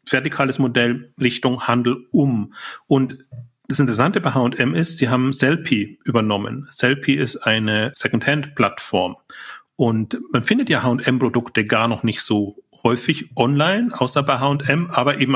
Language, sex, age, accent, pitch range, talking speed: German, male, 40-59, German, 120-150 Hz, 135 wpm